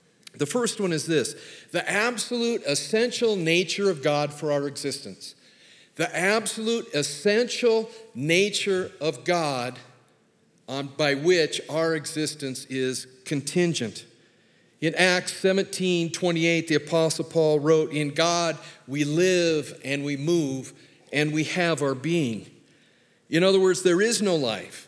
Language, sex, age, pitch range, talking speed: English, male, 50-69, 145-185 Hz, 130 wpm